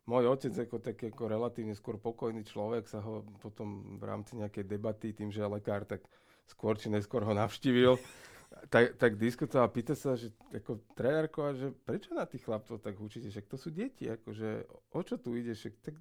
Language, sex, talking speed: Slovak, male, 200 wpm